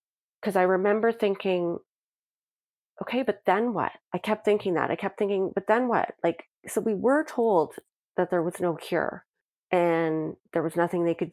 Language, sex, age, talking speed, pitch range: English, female, 30-49, 180 wpm, 165-195 Hz